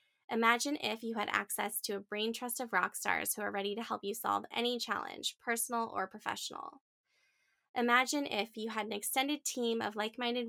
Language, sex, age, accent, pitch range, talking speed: English, female, 10-29, American, 205-245 Hz, 190 wpm